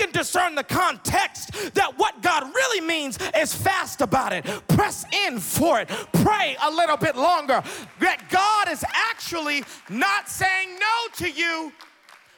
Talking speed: 145 wpm